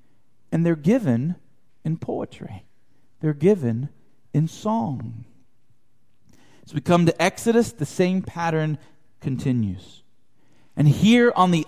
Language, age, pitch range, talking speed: English, 40-59, 145-210 Hz, 115 wpm